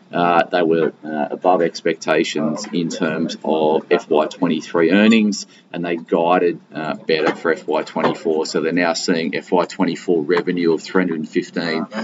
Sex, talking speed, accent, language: male, 145 wpm, Australian, English